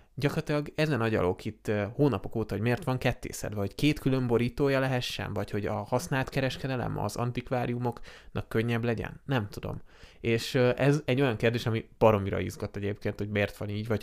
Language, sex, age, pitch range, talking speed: Hungarian, male, 20-39, 105-125 Hz, 170 wpm